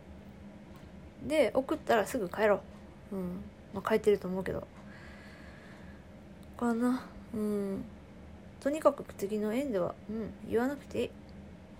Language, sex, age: Japanese, female, 20-39